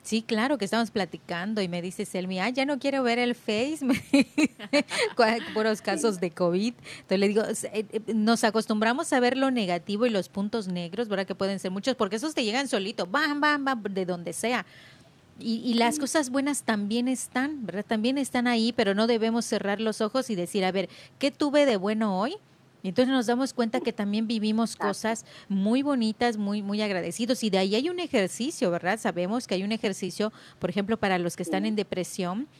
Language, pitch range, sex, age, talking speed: Spanish, 200-250 Hz, female, 30-49, 200 wpm